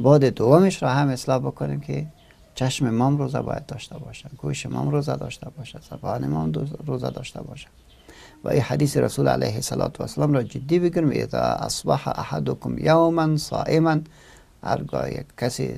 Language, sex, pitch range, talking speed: English, male, 115-160 Hz, 150 wpm